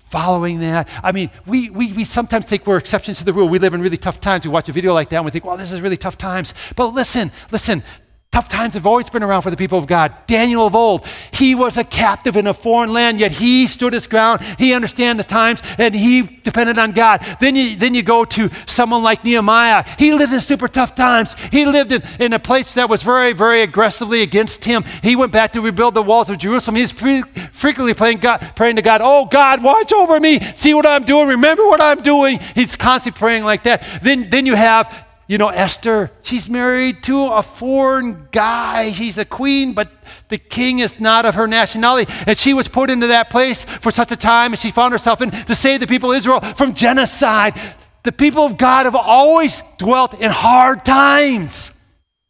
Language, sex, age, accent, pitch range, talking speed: English, male, 50-69, American, 180-250 Hz, 220 wpm